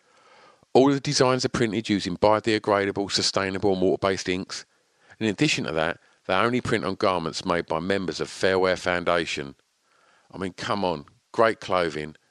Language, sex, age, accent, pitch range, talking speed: English, male, 50-69, British, 80-110 Hz, 160 wpm